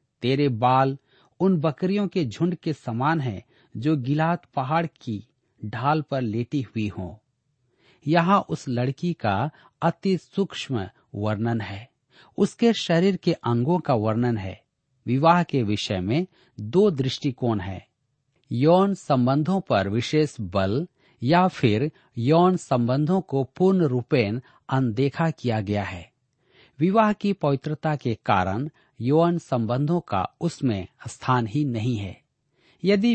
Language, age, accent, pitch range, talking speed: Hindi, 50-69, native, 115-160 Hz, 120 wpm